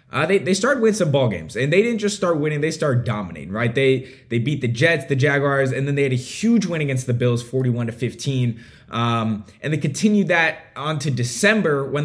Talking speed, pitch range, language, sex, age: 235 wpm, 120-165 Hz, English, male, 20-39